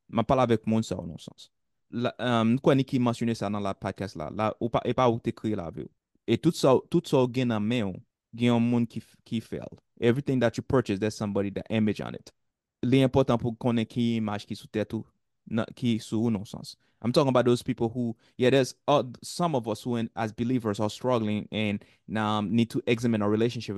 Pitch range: 110-135 Hz